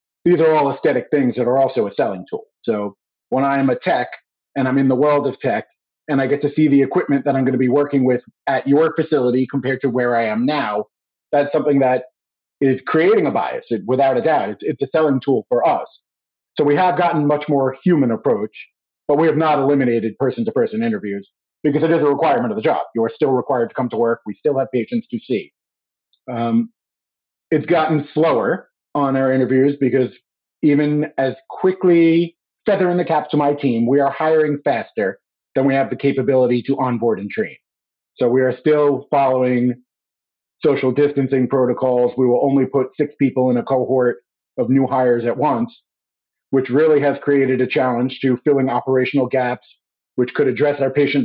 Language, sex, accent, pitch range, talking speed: English, male, American, 125-150 Hz, 200 wpm